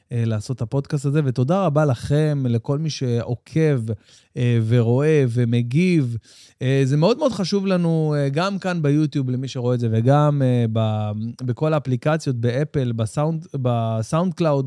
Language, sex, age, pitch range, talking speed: Hebrew, male, 20-39, 120-160 Hz, 125 wpm